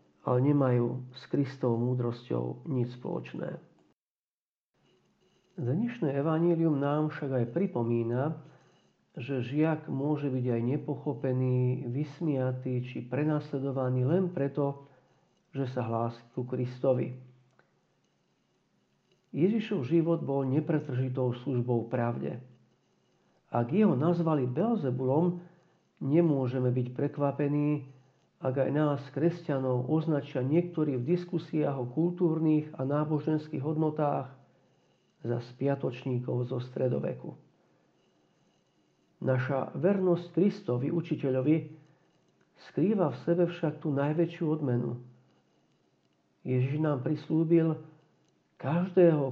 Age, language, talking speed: 50-69, Slovak, 90 wpm